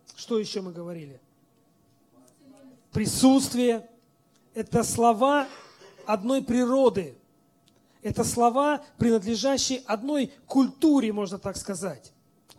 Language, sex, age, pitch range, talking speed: Russian, male, 40-59, 175-250 Hz, 80 wpm